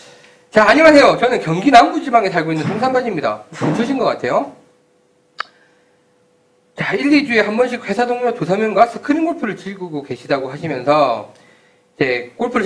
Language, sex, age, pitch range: Korean, male, 40-59, 160-240 Hz